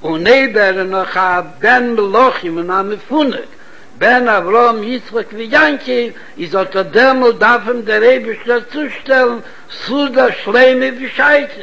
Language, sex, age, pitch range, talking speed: Hebrew, male, 60-79, 215-260 Hz, 105 wpm